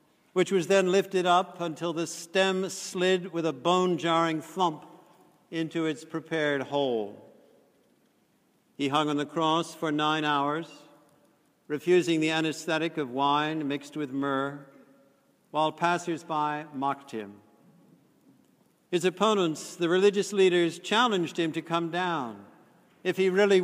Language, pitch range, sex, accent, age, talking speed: English, 145-180 Hz, male, American, 60-79, 125 wpm